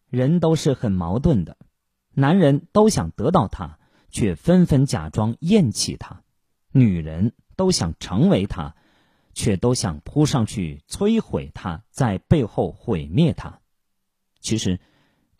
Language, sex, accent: Chinese, male, native